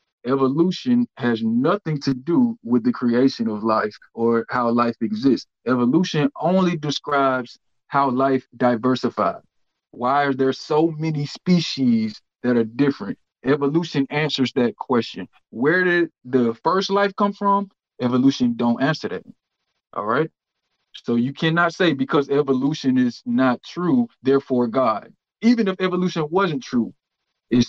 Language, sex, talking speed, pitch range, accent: English, male, 135 wpm, 125-165 Hz, American